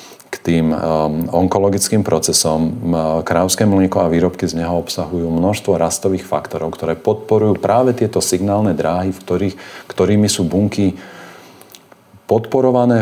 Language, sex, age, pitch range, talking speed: Slovak, male, 40-59, 85-100 Hz, 115 wpm